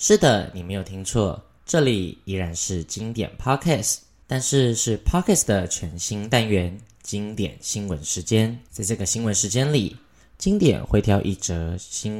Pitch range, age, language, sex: 90-115 Hz, 10-29, Chinese, male